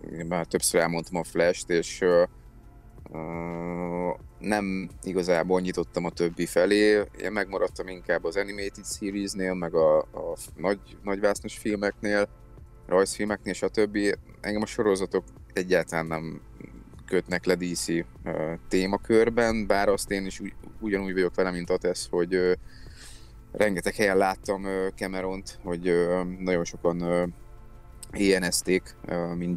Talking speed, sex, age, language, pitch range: 130 wpm, male, 20-39, Hungarian, 85-100 Hz